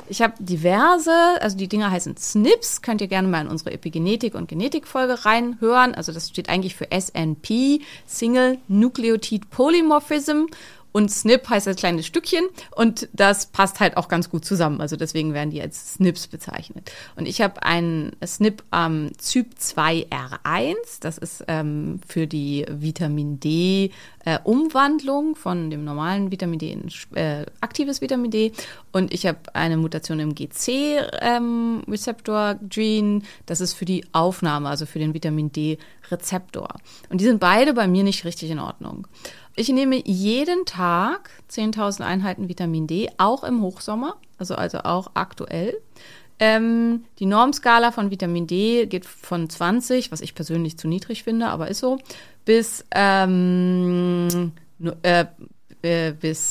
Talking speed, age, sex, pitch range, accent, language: 145 wpm, 30-49, female, 165-235 Hz, German, German